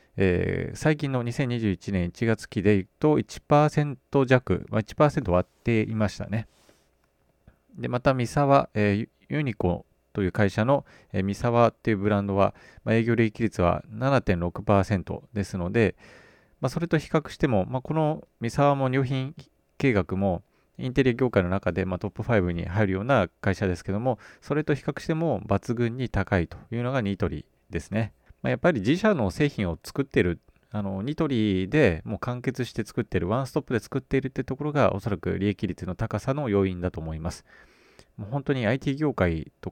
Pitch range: 95-130 Hz